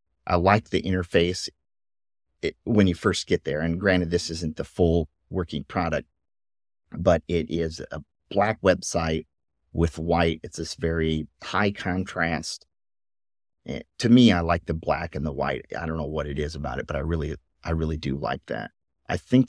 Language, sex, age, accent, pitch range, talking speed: English, male, 40-59, American, 80-95 Hz, 180 wpm